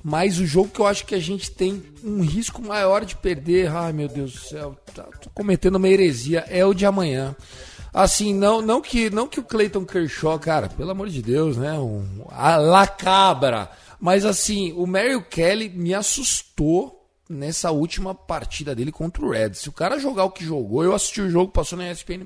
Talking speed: 200 wpm